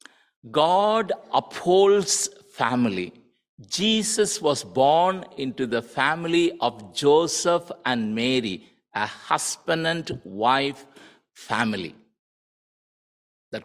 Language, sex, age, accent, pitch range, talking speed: English, male, 60-79, Indian, 115-165 Hz, 85 wpm